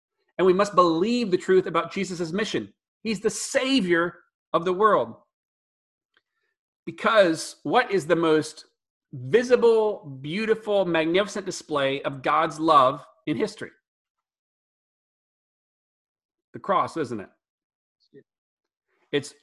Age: 40-59